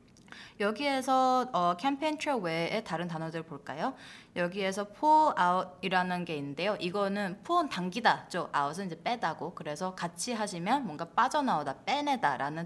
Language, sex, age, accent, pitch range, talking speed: English, female, 20-39, Korean, 165-245 Hz, 120 wpm